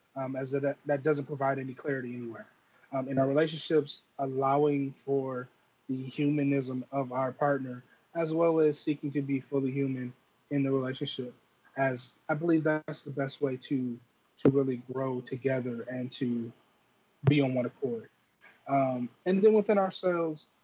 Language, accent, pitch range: English, American, 130-150 Hz